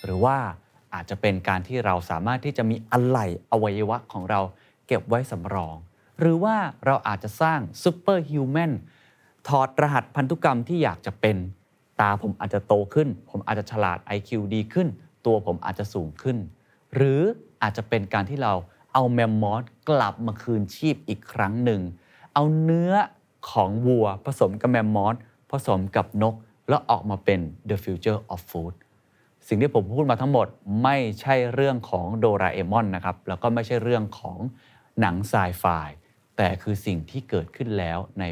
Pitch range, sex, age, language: 100-135 Hz, male, 30-49, Thai